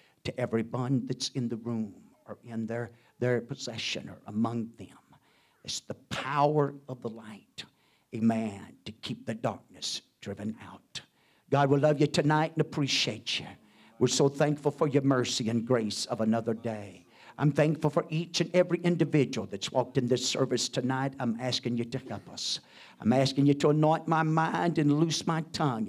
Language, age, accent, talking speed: English, 50-69, American, 175 wpm